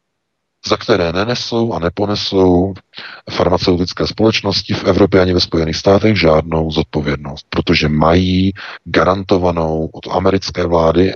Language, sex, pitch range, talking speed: Czech, male, 80-95 Hz, 115 wpm